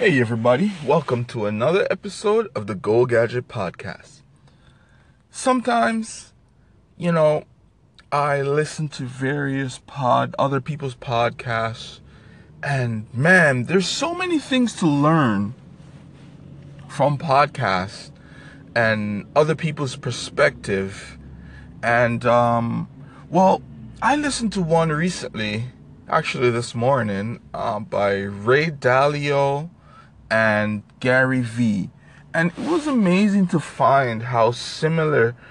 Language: English